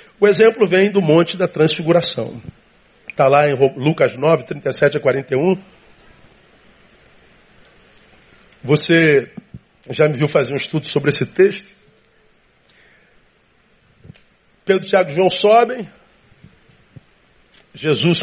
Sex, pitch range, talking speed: male, 145-195 Hz, 100 wpm